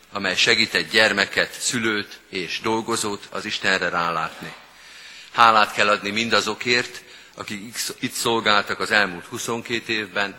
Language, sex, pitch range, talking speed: Hungarian, male, 100-115 Hz, 120 wpm